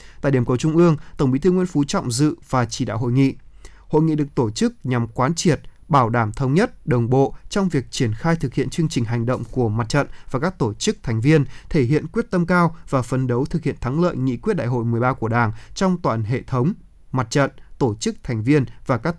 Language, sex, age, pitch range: Vietnamese, male, 20-39, 125-165 Hz